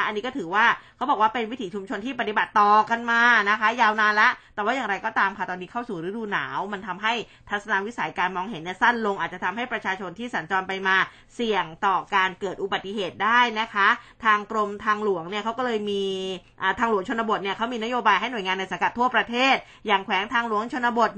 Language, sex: Thai, female